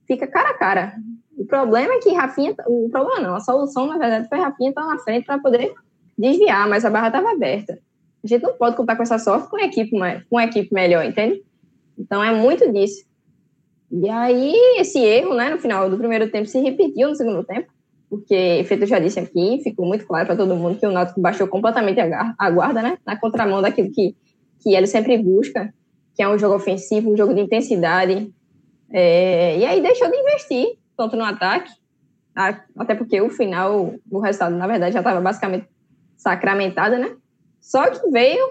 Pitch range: 190-250 Hz